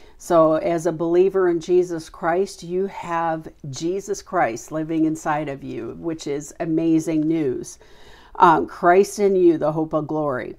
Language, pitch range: English, 160-200 Hz